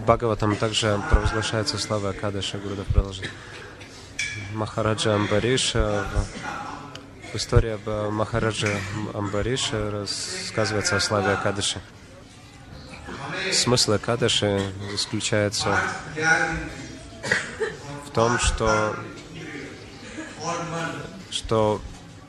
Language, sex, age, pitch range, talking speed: Russian, male, 20-39, 105-125 Hz, 70 wpm